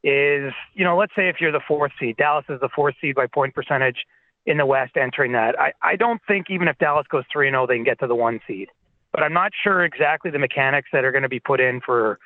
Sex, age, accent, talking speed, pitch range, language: male, 30-49, American, 265 wpm, 130-160 Hz, English